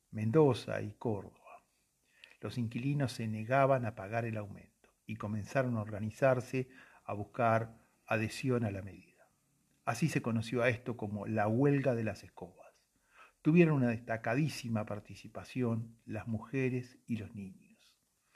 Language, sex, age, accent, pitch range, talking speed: Spanish, male, 50-69, Argentinian, 105-120 Hz, 135 wpm